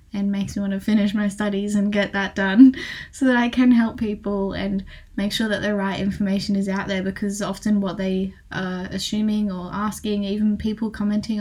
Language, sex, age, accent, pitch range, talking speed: English, female, 10-29, Australian, 195-220 Hz, 205 wpm